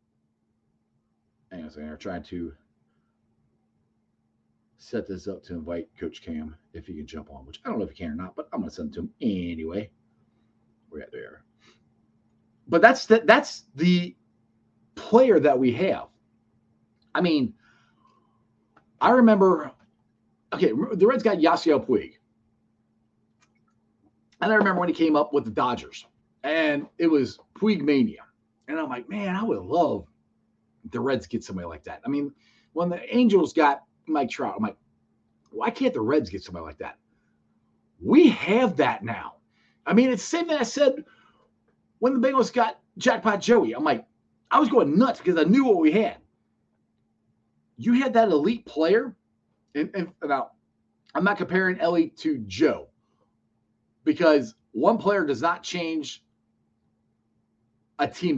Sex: male